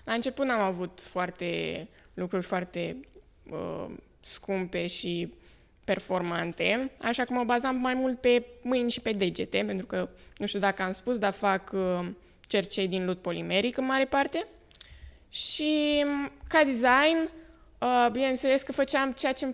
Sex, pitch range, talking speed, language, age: female, 185-245 Hz, 150 wpm, Romanian, 20-39